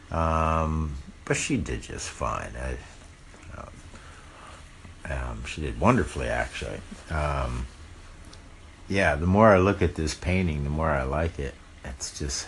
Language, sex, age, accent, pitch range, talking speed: English, male, 60-79, American, 75-95 Hz, 140 wpm